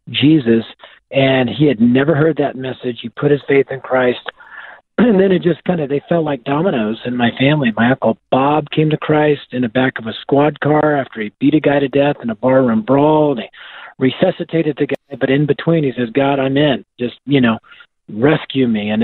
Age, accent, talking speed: 40-59, American, 220 wpm